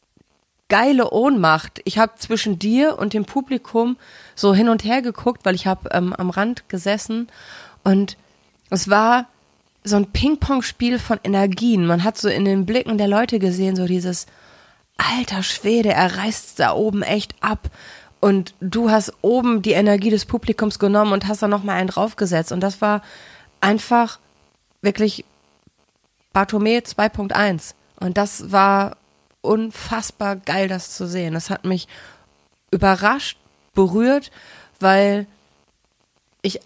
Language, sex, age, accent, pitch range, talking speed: German, female, 30-49, German, 185-220 Hz, 140 wpm